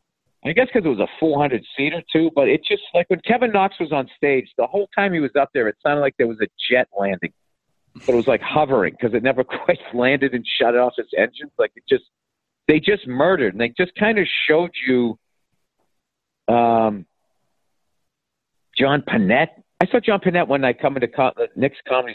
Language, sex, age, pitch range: English, male, 50-69, 115-170 Hz